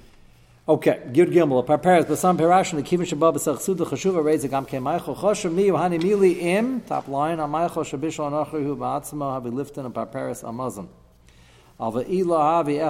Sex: male